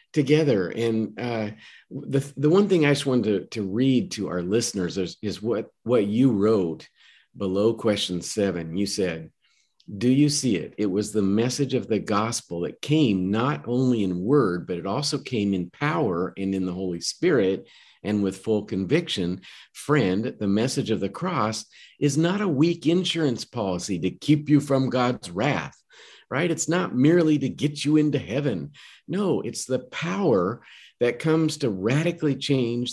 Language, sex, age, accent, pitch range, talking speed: English, male, 50-69, American, 105-145 Hz, 175 wpm